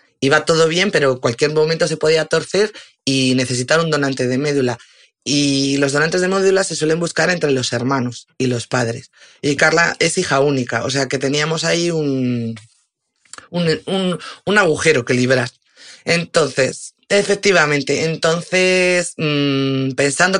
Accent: Spanish